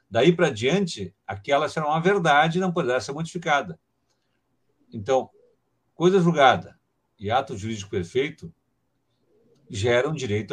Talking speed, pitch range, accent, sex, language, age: 125 wpm, 120-180 Hz, Brazilian, male, Portuguese, 50-69